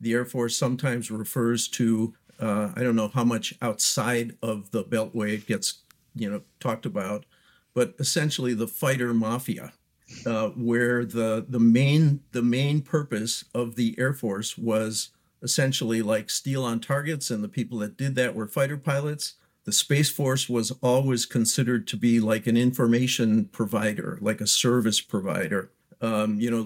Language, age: English, 50-69